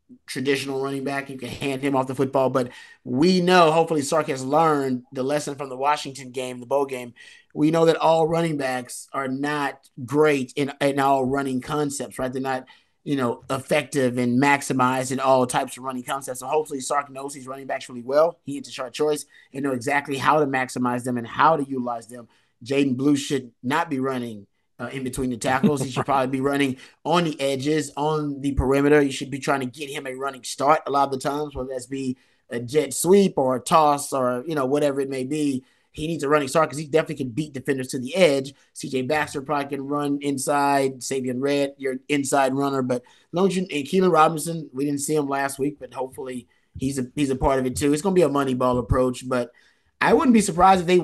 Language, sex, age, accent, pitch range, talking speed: English, male, 30-49, American, 130-150 Hz, 230 wpm